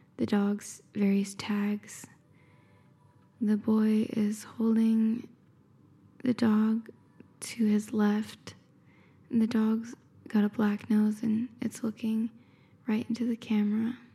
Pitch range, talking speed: 205-230 Hz, 110 wpm